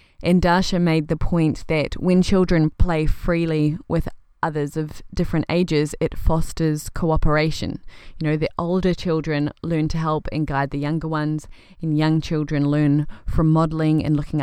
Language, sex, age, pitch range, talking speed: English, female, 20-39, 150-170 Hz, 160 wpm